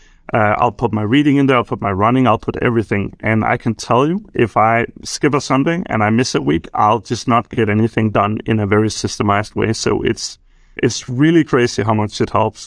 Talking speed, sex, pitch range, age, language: 230 wpm, male, 105-125 Hz, 30-49, English